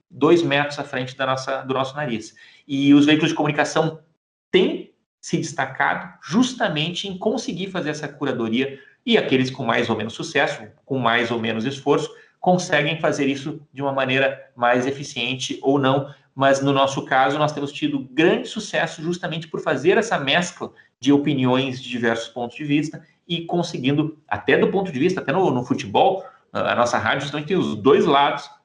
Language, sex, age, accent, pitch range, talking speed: Portuguese, male, 40-59, Brazilian, 130-160 Hz, 175 wpm